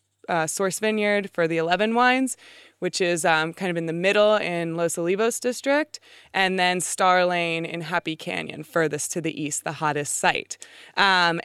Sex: female